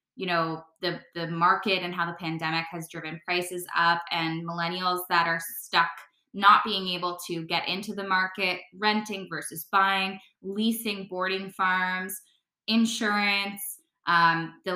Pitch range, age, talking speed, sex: 170-200 Hz, 10-29, 140 wpm, female